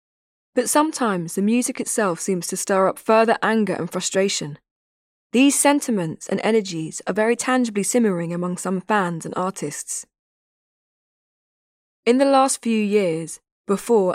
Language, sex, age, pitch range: English, female, 10-29, 180-230 Hz